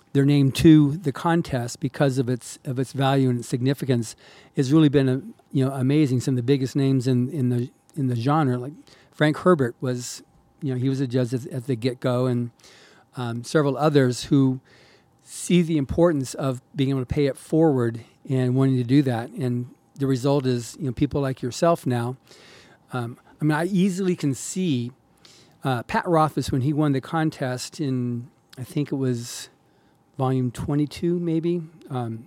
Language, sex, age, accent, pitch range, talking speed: English, male, 40-59, American, 125-150 Hz, 190 wpm